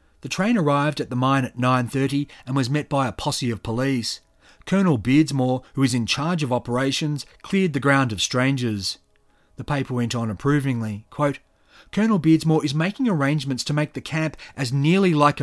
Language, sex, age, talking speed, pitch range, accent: English, male, 40-59, 180 wpm, 125-160 Hz, Australian